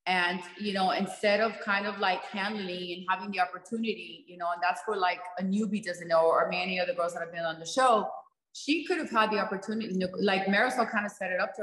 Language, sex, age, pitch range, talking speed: English, female, 30-49, 185-225 Hz, 245 wpm